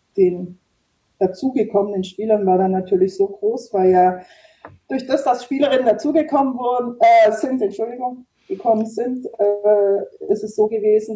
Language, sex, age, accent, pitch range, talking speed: German, female, 50-69, German, 185-220 Hz, 140 wpm